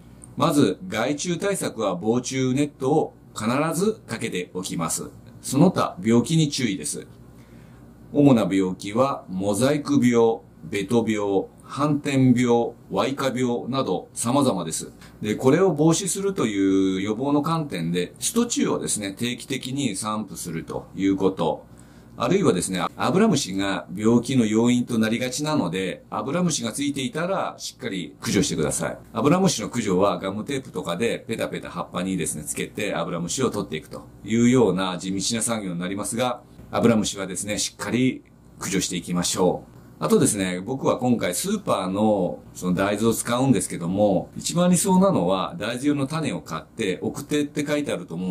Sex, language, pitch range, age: male, Japanese, 95-140 Hz, 40-59